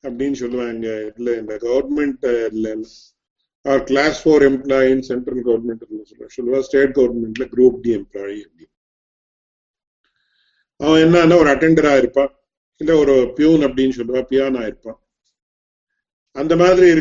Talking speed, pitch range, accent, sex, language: 90 wpm, 130-165 Hz, Indian, male, English